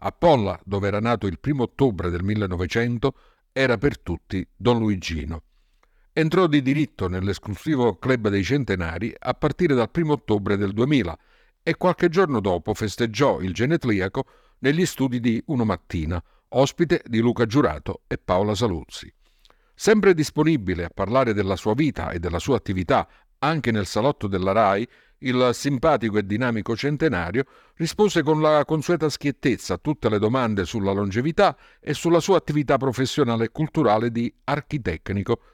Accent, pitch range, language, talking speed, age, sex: native, 100-140 Hz, Italian, 150 wpm, 50-69, male